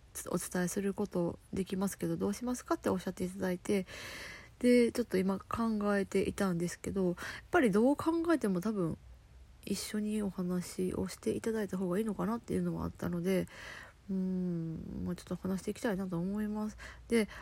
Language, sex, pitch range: Japanese, female, 180-225 Hz